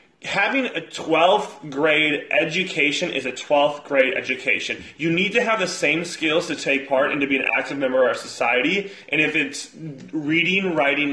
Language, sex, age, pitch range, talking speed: English, male, 20-39, 135-170 Hz, 185 wpm